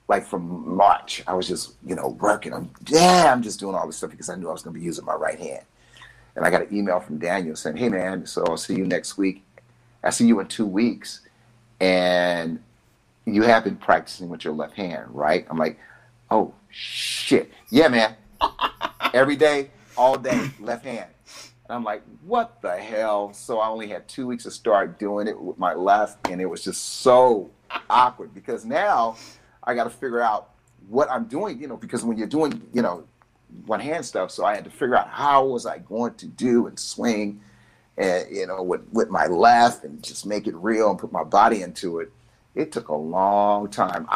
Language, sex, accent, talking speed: English, male, American, 210 wpm